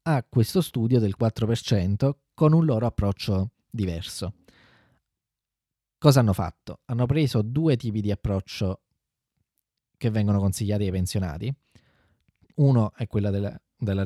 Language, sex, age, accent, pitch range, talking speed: Italian, male, 20-39, native, 100-130 Hz, 120 wpm